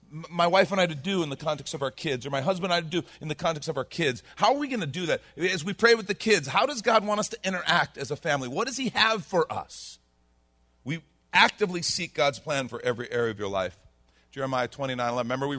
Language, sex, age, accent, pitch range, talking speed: English, male, 40-59, American, 95-160 Hz, 270 wpm